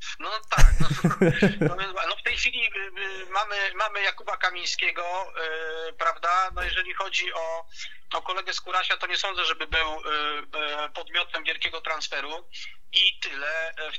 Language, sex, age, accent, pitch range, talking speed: Polish, male, 30-49, native, 150-185 Hz, 130 wpm